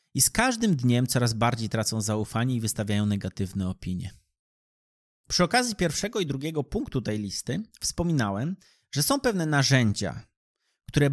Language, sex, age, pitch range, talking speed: Polish, male, 30-49, 110-155 Hz, 140 wpm